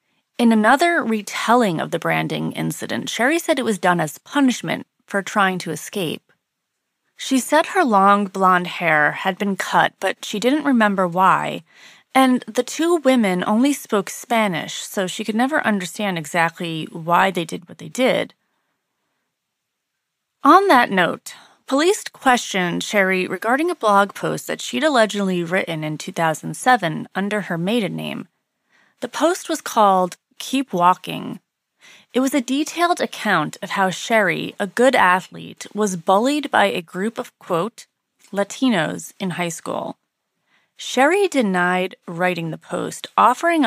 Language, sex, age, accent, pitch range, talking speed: English, female, 30-49, American, 180-255 Hz, 145 wpm